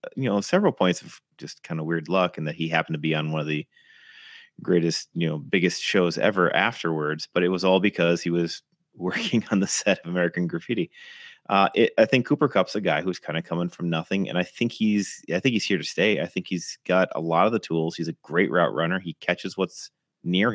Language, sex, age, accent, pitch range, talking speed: English, male, 30-49, American, 85-100 Hz, 240 wpm